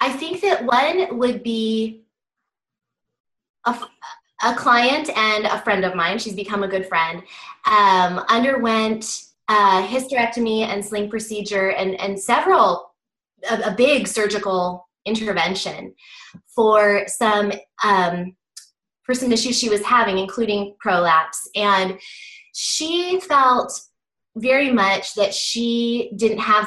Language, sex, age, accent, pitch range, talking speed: English, female, 20-39, American, 195-240 Hz, 120 wpm